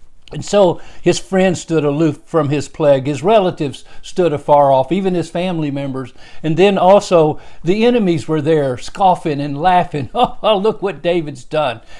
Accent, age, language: American, 60-79, English